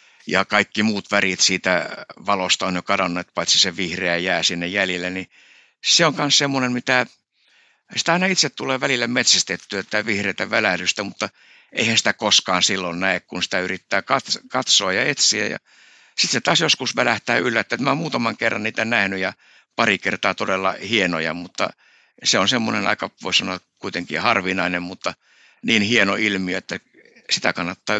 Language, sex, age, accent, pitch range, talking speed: Finnish, male, 60-79, native, 90-110 Hz, 160 wpm